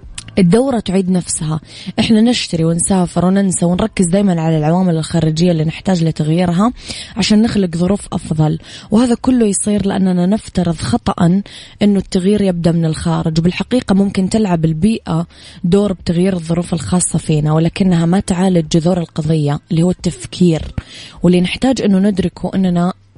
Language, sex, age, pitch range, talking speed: English, female, 20-39, 165-200 Hz, 135 wpm